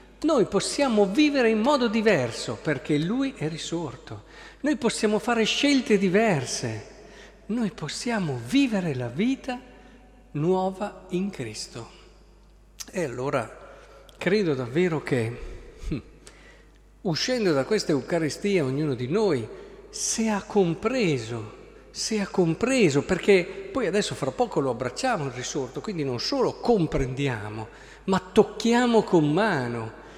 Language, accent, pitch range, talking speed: Italian, native, 135-210 Hz, 115 wpm